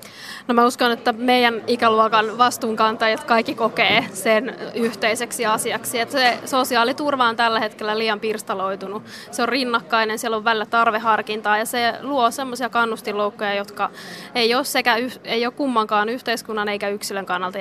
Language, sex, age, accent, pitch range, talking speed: Finnish, female, 20-39, native, 215-240 Hz, 145 wpm